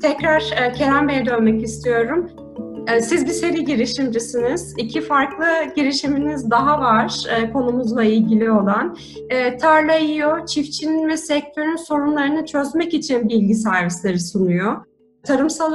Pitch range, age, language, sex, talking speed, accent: 240-320 Hz, 30-49, Turkish, female, 110 wpm, native